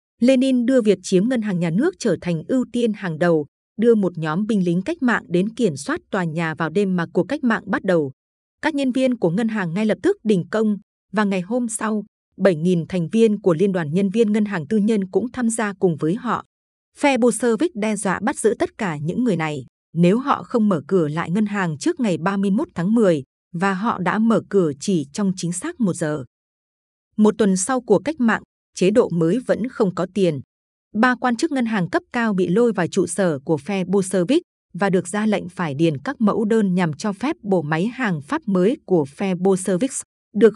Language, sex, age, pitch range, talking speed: Vietnamese, female, 20-39, 180-235 Hz, 225 wpm